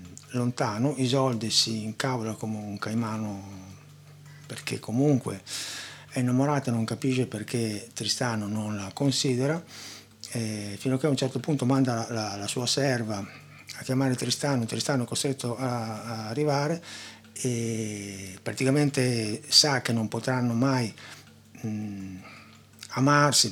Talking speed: 125 wpm